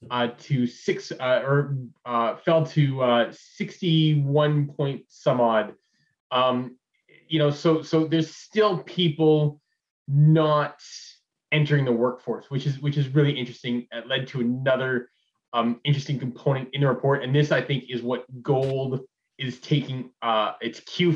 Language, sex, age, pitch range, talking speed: English, male, 20-39, 120-150 Hz, 150 wpm